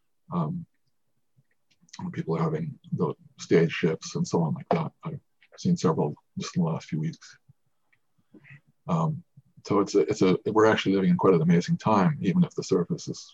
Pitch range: 110-170 Hz